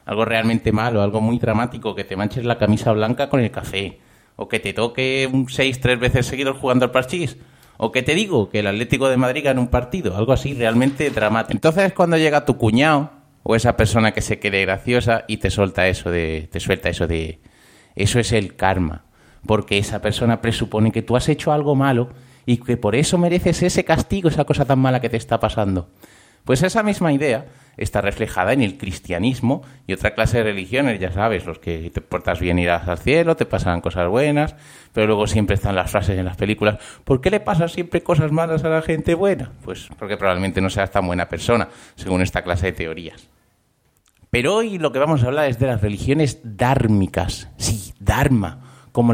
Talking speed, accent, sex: 205 wpm, Spanish, male